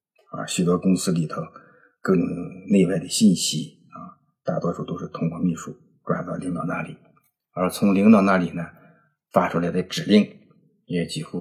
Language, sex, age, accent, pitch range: Chinese, male, 50-69, native, 85-100 Hz